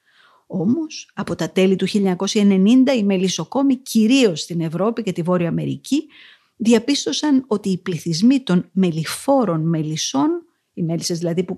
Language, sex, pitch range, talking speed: Greek, female, 170-240 Hz, 135 wpm